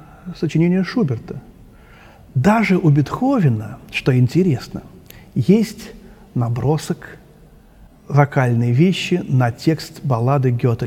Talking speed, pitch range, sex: 85 wpm, 130-160 Hz, male